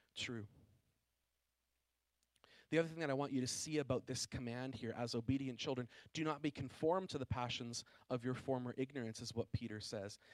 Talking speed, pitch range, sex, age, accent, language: 185 wpm, 120-185 Hz, male, 30-49, American, English